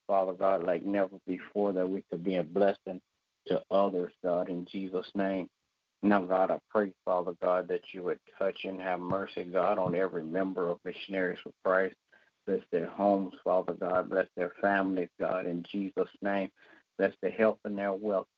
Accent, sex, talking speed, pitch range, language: American, male, 185 wpm, 90-100 Hz, English